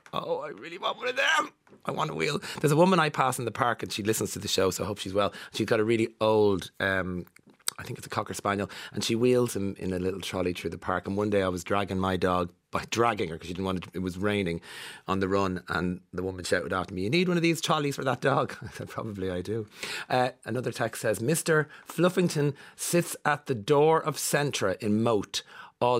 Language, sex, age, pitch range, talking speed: English, male, 30-49, 90-120 Hz, 255 wpm